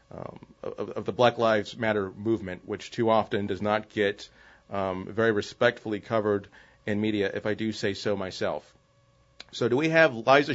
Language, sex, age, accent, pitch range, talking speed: English, male, 30-49, American, 110-140 Hz, 175 wpm